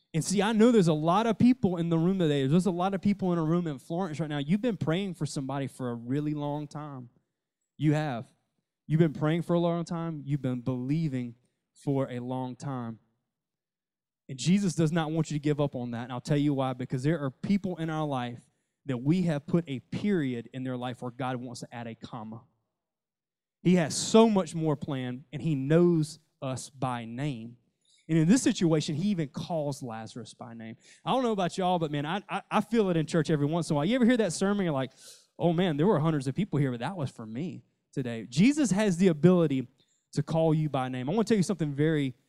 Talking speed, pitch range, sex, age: 240 wpm, 130-170 Hz, male, 20-39